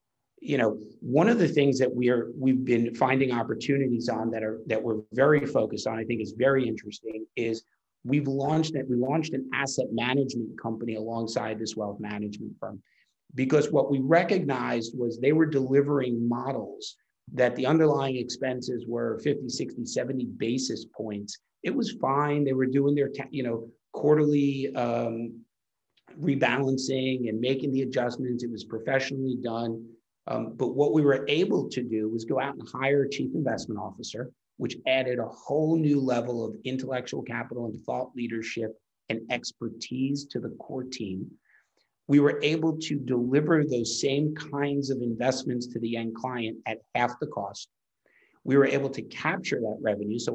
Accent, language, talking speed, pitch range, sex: American, English, 170 wpm, 115-140 Hz, male